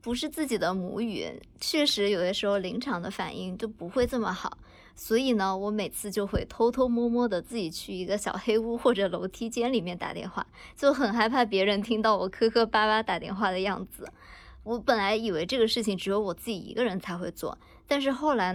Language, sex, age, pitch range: Chinese, male, 20-39, 195-235 Hz